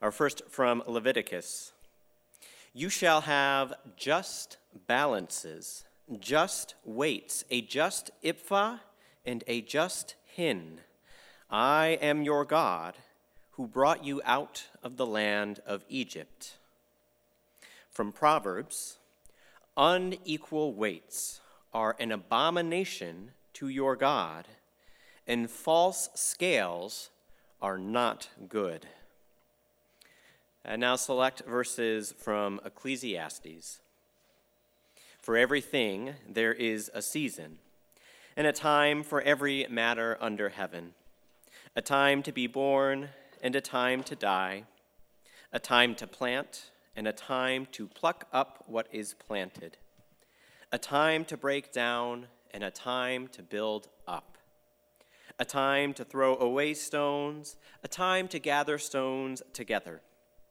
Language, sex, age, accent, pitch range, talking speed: English, male, 40-59, American, 110-145 Hz, 110 wpm